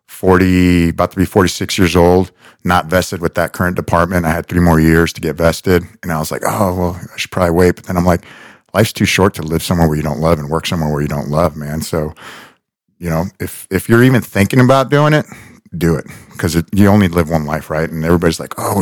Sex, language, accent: male, English, American